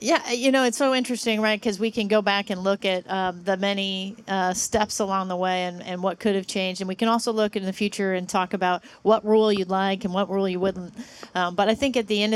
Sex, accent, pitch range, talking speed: female, American, 180-215 Hz, 270 wpm